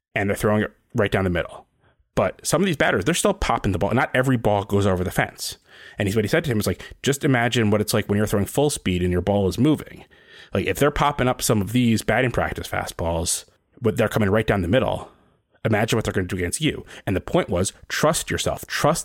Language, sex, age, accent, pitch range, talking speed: English, male, 30-49, American, 95-125 Hz, 260 wpm